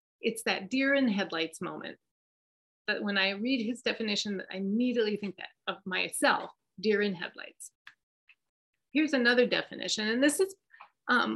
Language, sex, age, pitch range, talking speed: English, female, 30-49, 195-245 Hz, 150 wpm